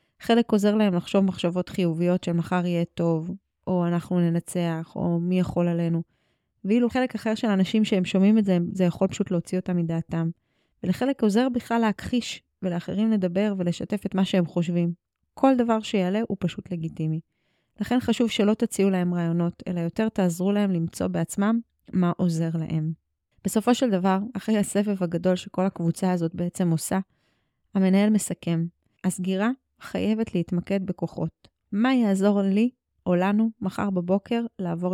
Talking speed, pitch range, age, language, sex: 155 wpm, 175-210 Hz, 20-39, Hebrew, female